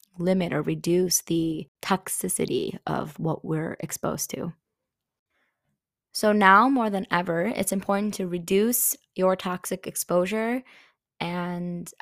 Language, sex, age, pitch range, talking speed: English, female, 20-39, 170-195 Hz, 115 wpm